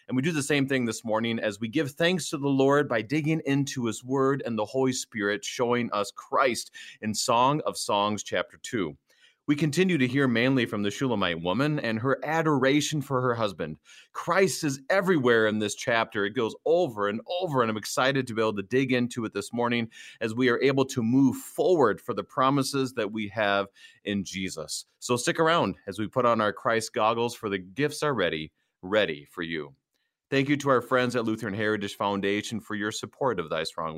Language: English